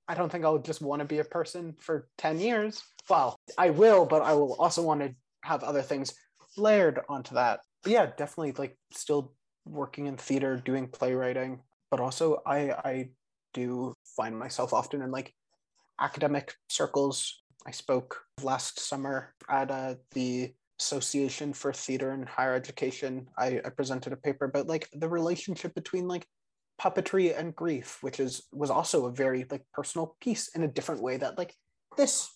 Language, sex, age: English, male, 20-39